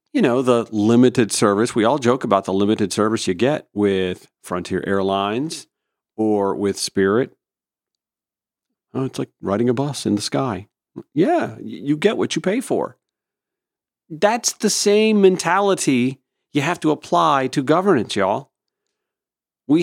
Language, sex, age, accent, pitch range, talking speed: English, male, 40-59, American, 100-155 Hz, 140 wpm